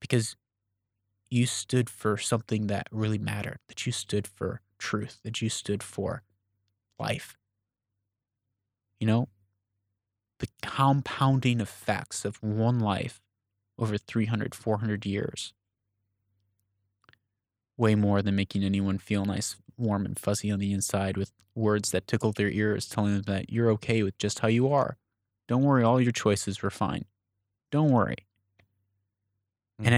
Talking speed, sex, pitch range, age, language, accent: 140 wpm, male, 100-115 Hz, 20-39, English, American